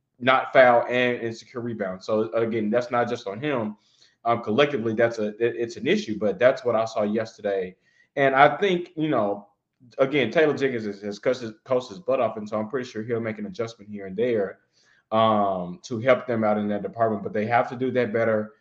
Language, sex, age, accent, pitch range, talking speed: English, male, 20-39, American, 110-125 Hz, 220 wpm